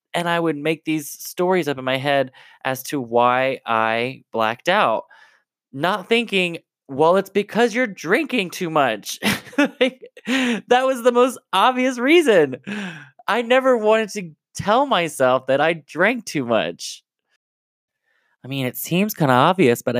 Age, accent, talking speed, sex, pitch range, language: 20-39, American, 150 wpm, male, 120-175 Hz, English